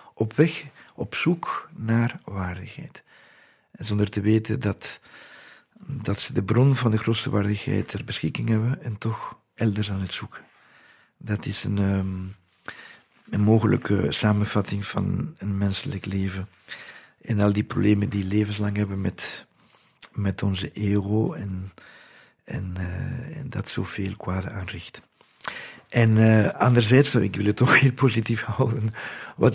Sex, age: male, 50-69